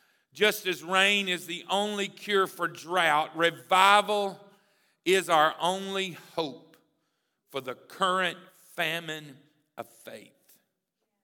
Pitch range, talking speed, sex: 145-185 Hz, 105 wpm, male